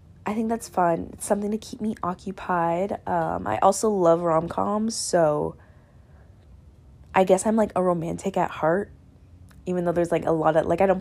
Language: English